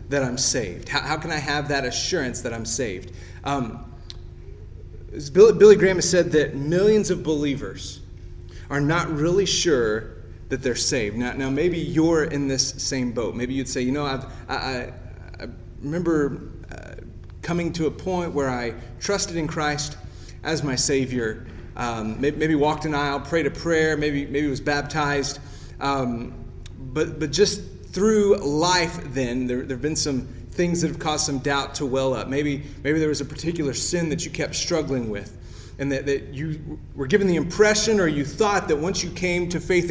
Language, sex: English, male